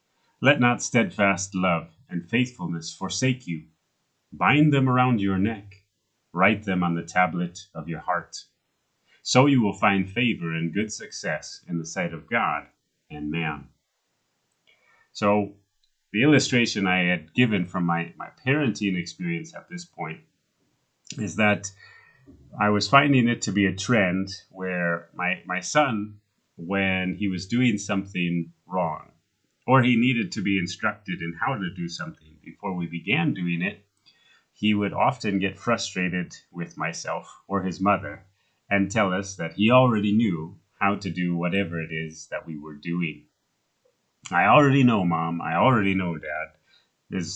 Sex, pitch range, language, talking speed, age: male, 85-110 Hz, English, 155 wpm, 30-49